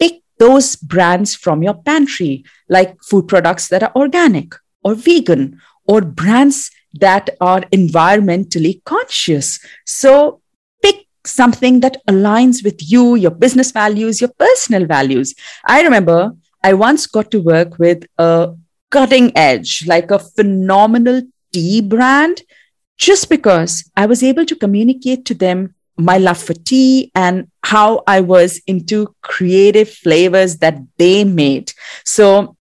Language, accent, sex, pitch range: English, Indian, female, 175-255 Hz